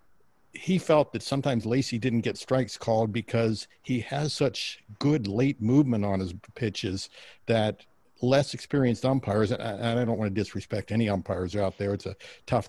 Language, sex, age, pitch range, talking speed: English, male, 60-79, 110-130 Hz, 170 wpm